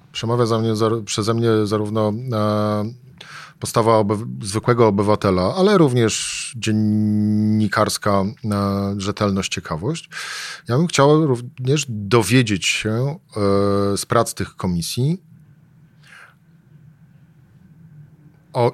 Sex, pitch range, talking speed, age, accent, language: male, 105-135 Hz, 75 wpm, 40-59, native, Polish